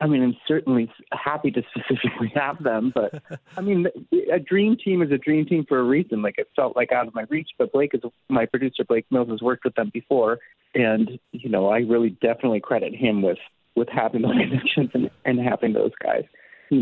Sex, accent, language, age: male, American, English, 30-49